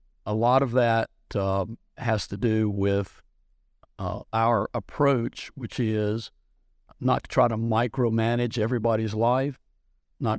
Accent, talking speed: American, 125 wpm